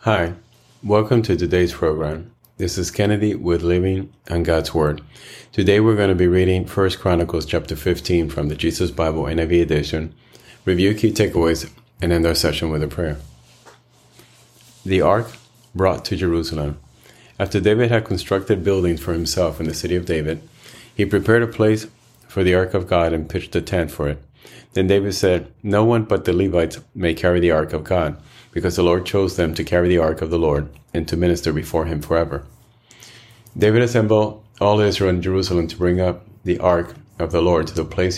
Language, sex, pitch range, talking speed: English, male, 85-105 Hz, 190 wpm